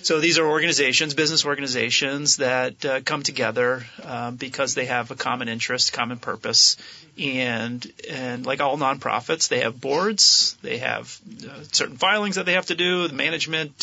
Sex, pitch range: male, 135-165 Hz